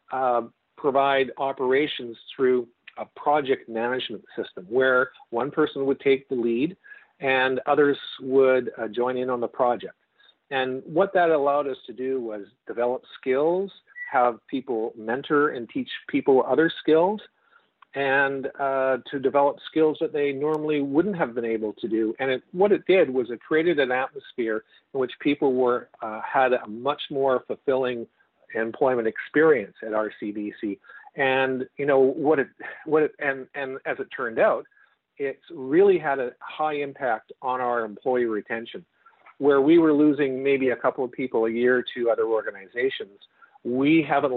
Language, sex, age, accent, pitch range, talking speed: English, male, 50-69, American, 120-155 Hz, 160 wpm